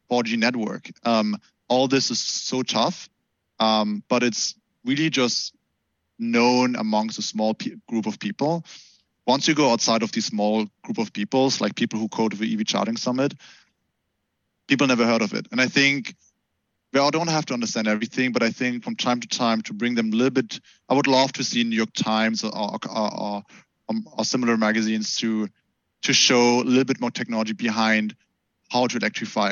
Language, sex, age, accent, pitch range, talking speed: English, male, 20-39, German, 110-125 Hz, 190 wpm